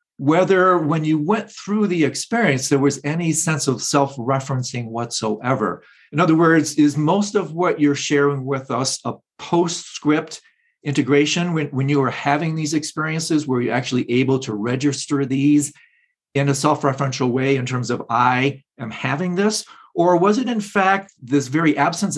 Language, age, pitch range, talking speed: English, 40-59, 125-160 Hz, 165 wpm